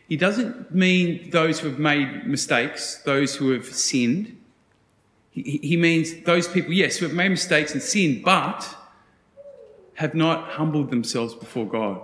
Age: 30-49